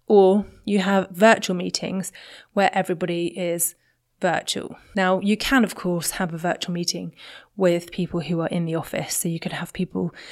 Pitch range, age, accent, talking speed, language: 175-205 Hz, 20-39, British, 175 wpm, English